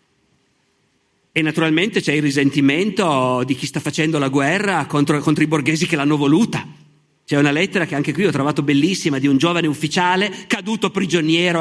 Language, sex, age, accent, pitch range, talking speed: Italian, male, 50-69, native, 150-215 Hz, 170 wpm